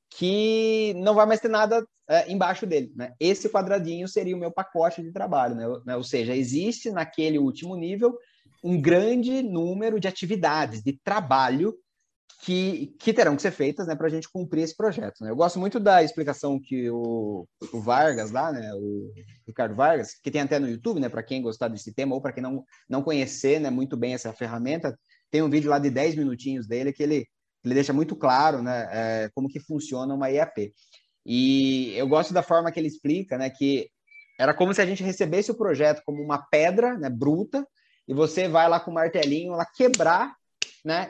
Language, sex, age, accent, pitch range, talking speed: Portuguese, male, 20-39, Brazilian, 135-195 Hz, 200 wpm